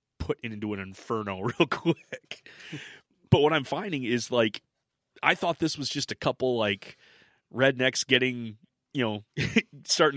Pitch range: 105-130 Hz